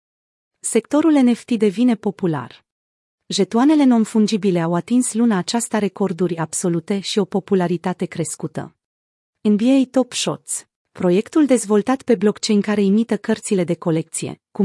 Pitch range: 185-235 Hz